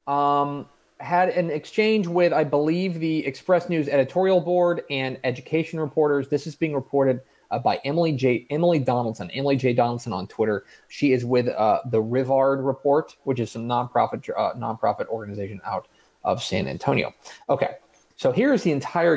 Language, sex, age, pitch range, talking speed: English, male, 30-49, 125-175 Hz, 170 wpm